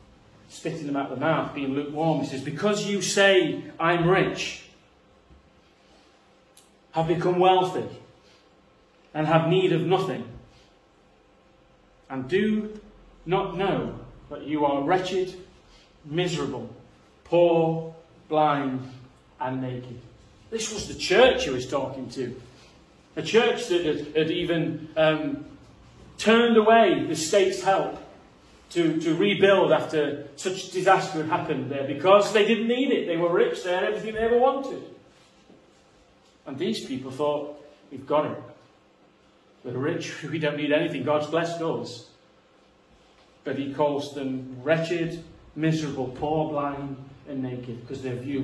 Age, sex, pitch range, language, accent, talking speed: 40-59, male, 145-190 Hz, English, British, 135 wpm